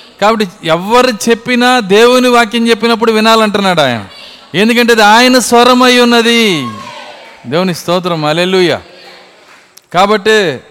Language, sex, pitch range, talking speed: Telugu, male, 155-200 Hz, 100 wpm